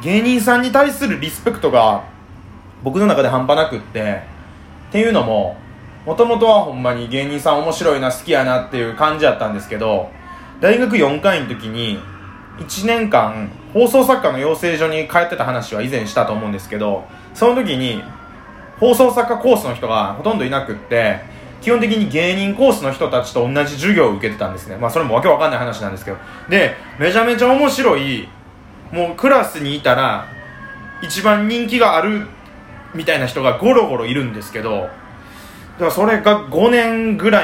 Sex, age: male, 20-39